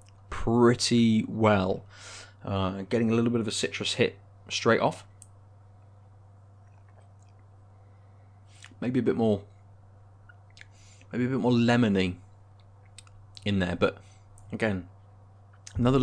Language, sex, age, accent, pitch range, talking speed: English, male, 20-39, British, 100-110 Hz, 100 wpm